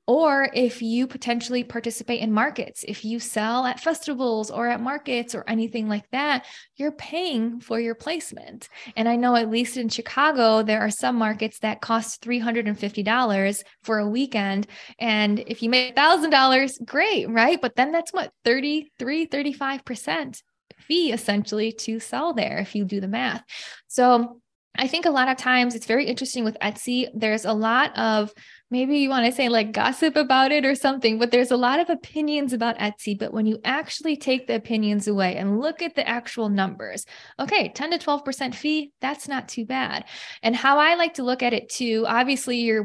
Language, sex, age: English, female, 10-29